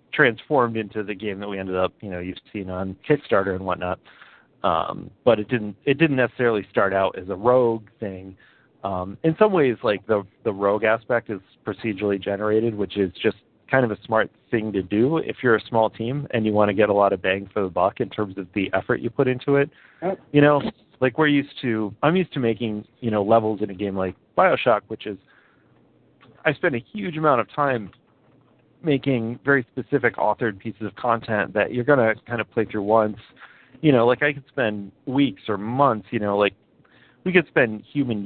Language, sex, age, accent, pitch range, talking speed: English, male, 40-59, American, 100-120 Hz, 215 wpm